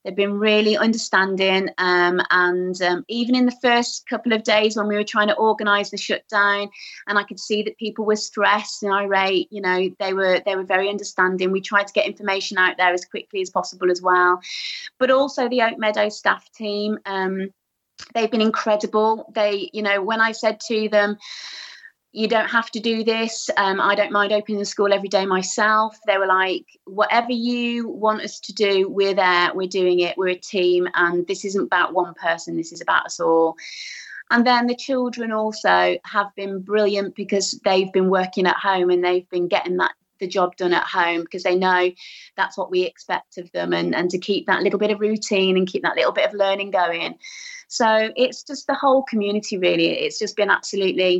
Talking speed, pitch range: 205 wpm, 185-220 Hz